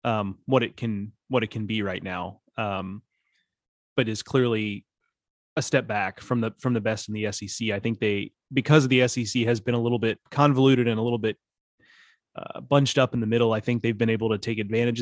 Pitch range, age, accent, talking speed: 110-130 Hz, 30-49, American, 225 wpm